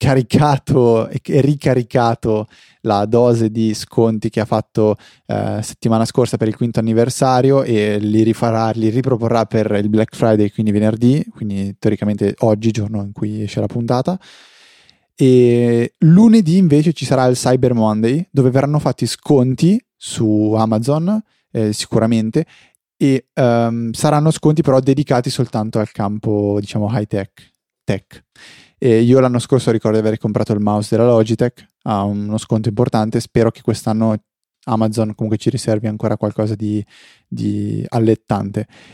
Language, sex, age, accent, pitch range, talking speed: Italian, male, 20-39, native, 110-130 Hz, 140 wpm